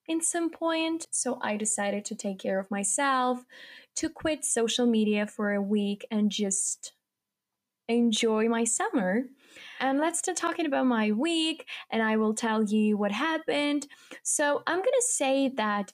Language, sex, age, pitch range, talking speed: English, female, 10-29, 205-280 Hz, 160 wpm